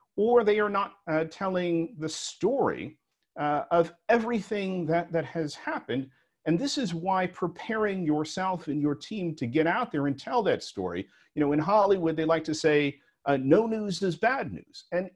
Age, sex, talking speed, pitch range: 50-69, male, 185 wpm, 165-225 Hz